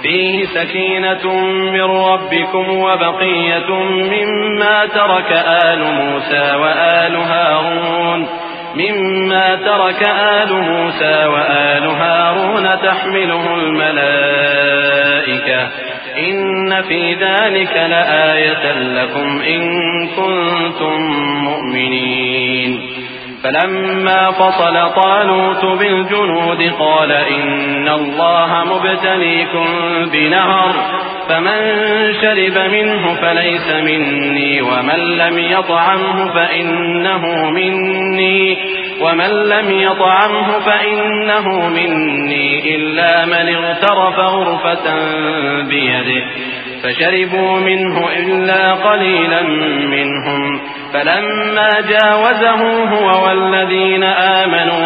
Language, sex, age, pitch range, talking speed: Urdu, male, 30-49, 155-190 Hz, 70 wpm